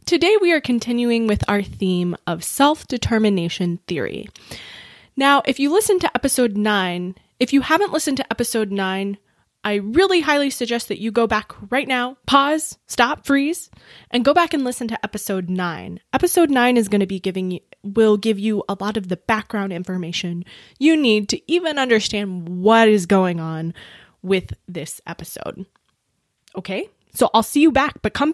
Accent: American